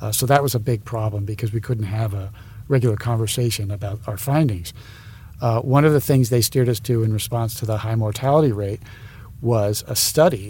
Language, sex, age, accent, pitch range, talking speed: English, male, 50-69, American, 110-120 Hz, 205 wpm